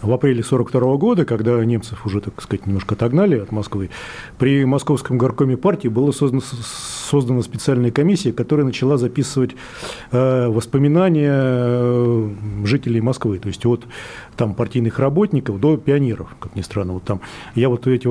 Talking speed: 140 wpm